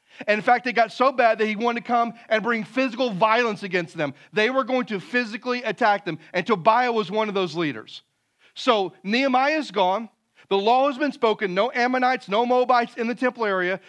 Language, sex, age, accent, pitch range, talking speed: English, male, 40-59, American, 185-255 Hz, 210 wpm